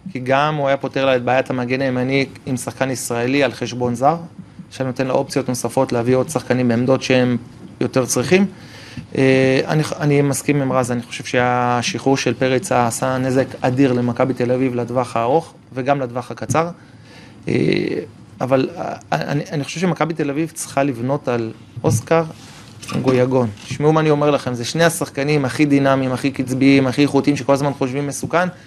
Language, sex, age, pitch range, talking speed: Hebrew, male, 30-49, 130-165 Hz, 165 wpm